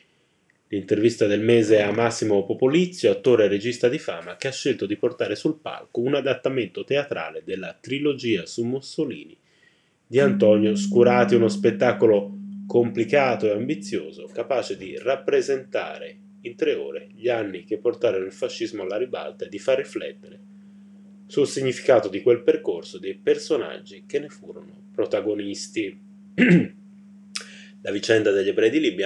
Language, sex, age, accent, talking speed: Italian, male, 30-49, native, 140 wpm